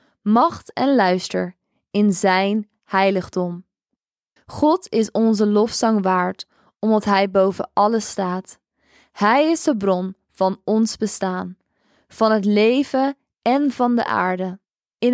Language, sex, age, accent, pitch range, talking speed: Dutch, female, 20-39, Dutch, 200-255 Hz, 125 wpm